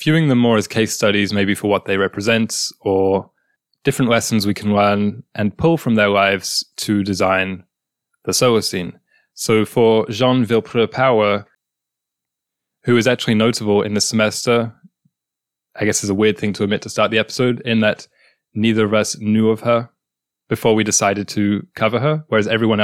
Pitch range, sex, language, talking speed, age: 100-115 Hz, male, English, 175 wpm, 20-39